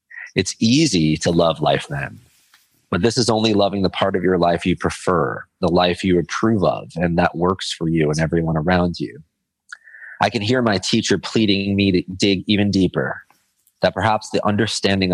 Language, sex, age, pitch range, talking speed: English, male, 30-49, 85-100 Hz, 185 wpm